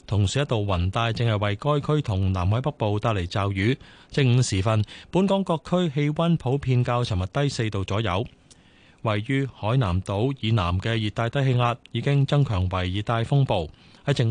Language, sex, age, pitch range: Chinese, male, 20-39, 105-140 Hz